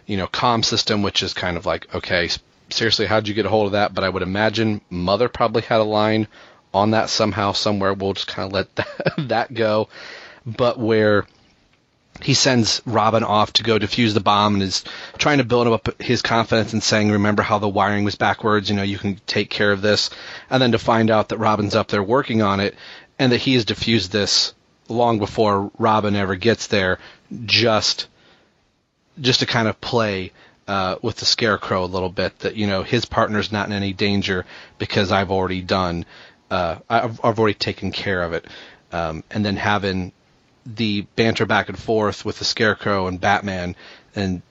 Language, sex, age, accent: English, male, 30-49, American